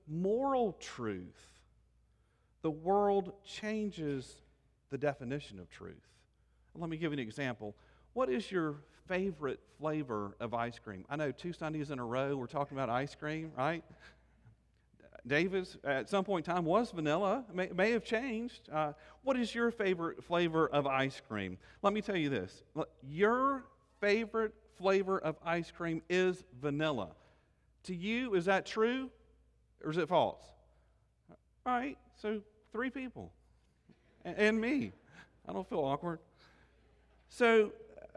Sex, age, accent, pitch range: male, 40-59, American, 145-215 Hz